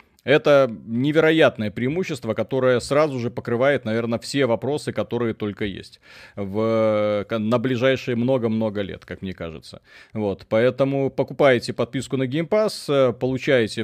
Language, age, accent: Russian, 30-49, native